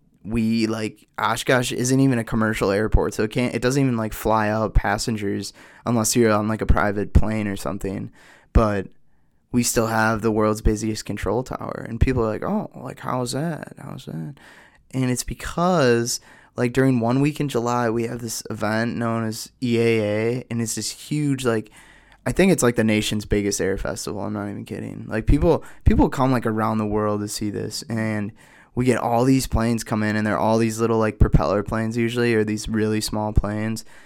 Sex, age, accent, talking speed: male, 20-39, American, 200 wpm